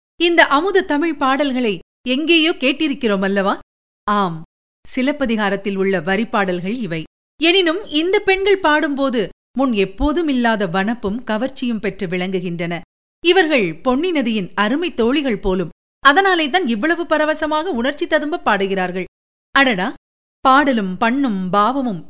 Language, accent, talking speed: Tamil, native, 100 wpm